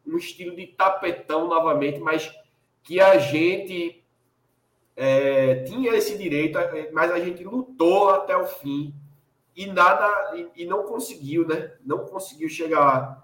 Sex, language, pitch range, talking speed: male, Portuguese, 140-185 Hz, 135 wpm